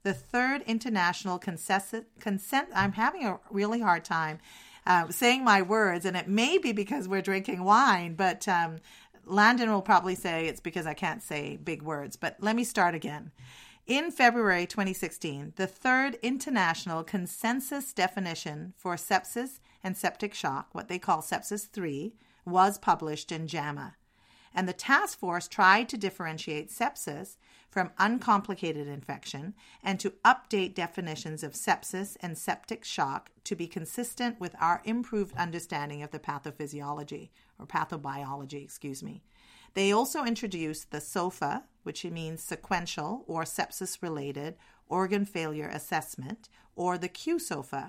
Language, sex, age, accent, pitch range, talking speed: English, female, 40-59, American, 155-210 Hz, 140 wpm